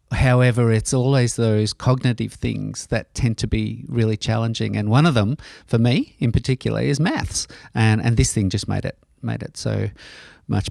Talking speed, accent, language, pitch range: 185 wpm, Australian, English, 110-130 Hz